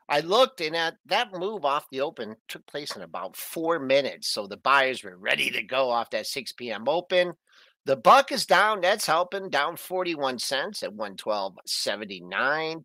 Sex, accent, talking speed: male, American, 180 wpm